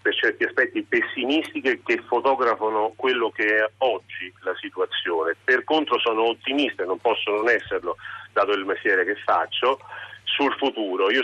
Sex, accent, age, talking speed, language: male, native, 40-59, 150 wpm, Italian